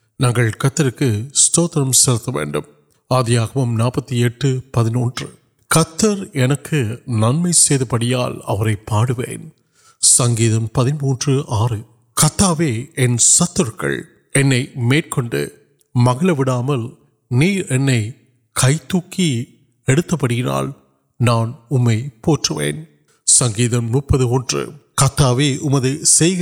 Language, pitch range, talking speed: Urdu, 120-155 Hz, 50 wpm